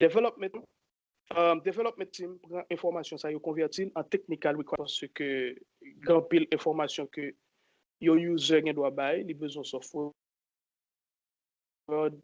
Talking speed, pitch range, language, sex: 135 wpm, 150-190 Hz, French, male